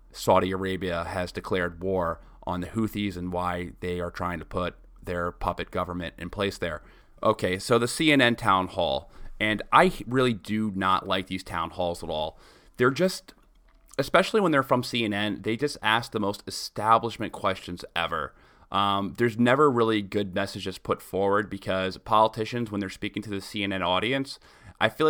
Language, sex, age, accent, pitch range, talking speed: English, male, 30-49, American, 95-115 Hz, 170 wpm